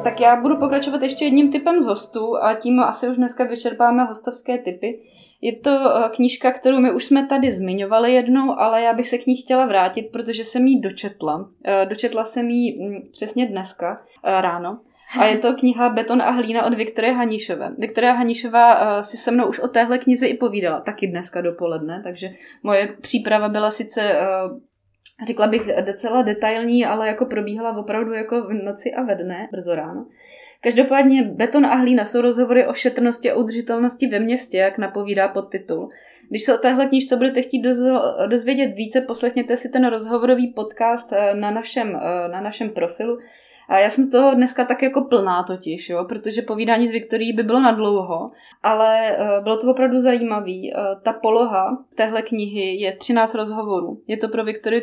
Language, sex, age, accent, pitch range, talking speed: Czech, female, 20-39, native, 200-245 Hz, 175 wpm